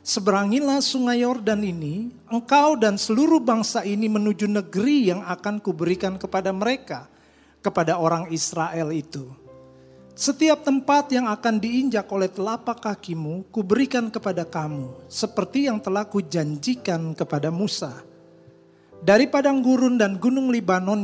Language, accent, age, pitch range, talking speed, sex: Indonesian, native, 40-59, 180-250 Hz, 125 wpm, male